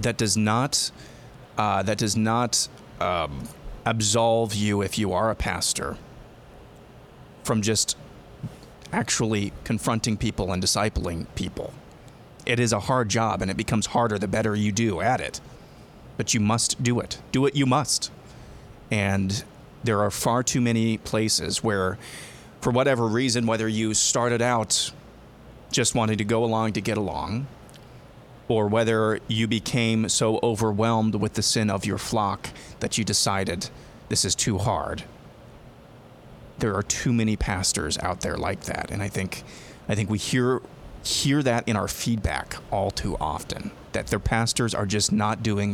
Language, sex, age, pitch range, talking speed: English, male, 30-49, 105-120 Hz, 155 wpm